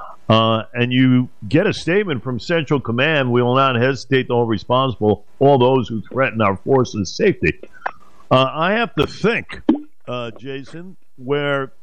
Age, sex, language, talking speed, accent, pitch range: 50-69, male, English, 155 wpm, American, 115-145 Hz